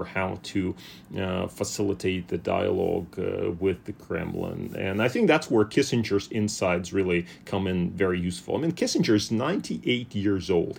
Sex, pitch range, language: male, 95-110 Hz, English